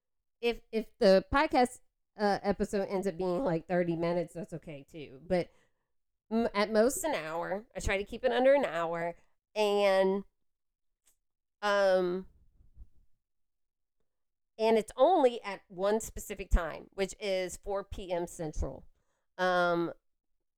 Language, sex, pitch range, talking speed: English, female, 185-225 Hz, 125 wpm